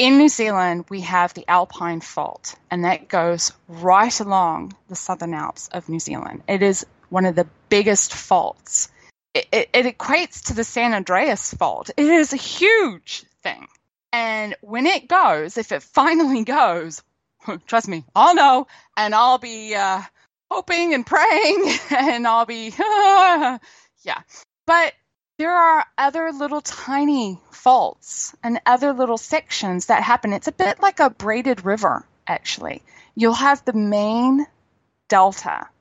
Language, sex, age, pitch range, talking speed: English, female, 20-39, 200-290 Hz, 150 wpm